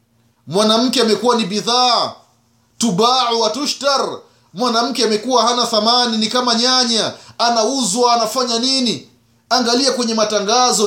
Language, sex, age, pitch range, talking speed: Swahili, male, 30-49, 145-240 Hz, 105 wpm